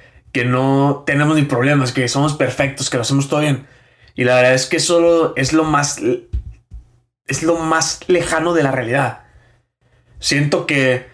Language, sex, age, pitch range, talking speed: Spanish, male, 20-39, 125-150 Hz, 155 wpm